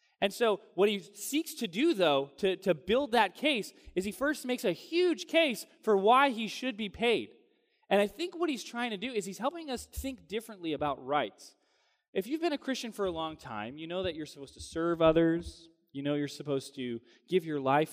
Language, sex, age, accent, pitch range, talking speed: English, male, 20-39, American, 145-220 Hz, 225 wpm